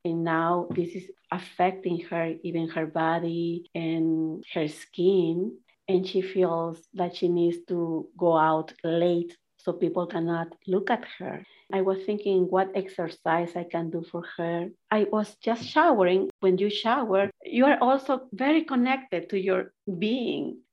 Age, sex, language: 50-69, female, English